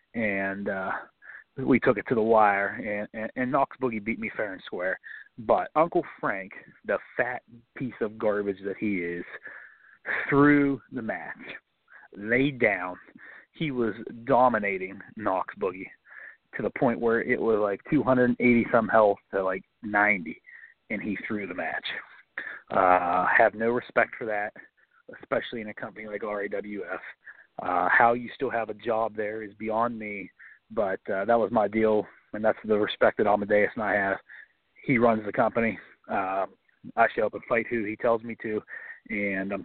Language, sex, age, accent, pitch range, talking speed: English, male, 30-49, American, 100-115 Hz, 170 wpm